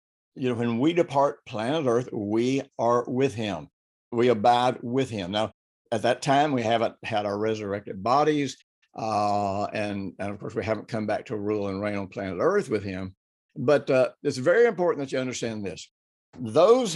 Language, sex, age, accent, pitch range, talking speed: English, male, 60-79, American, 115-140 Hz, 190 wpm